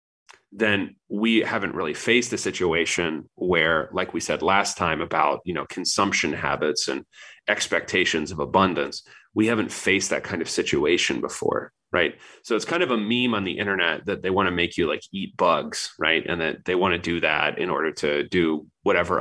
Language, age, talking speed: English, 30-49, 195 wpm